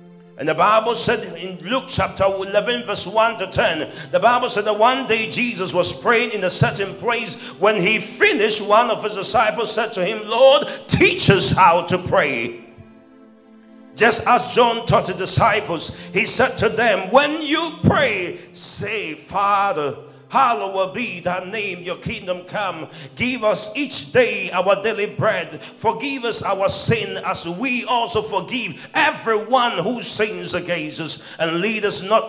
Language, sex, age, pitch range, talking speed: English, male, 50-69, 185-230 Hz, 165 wpm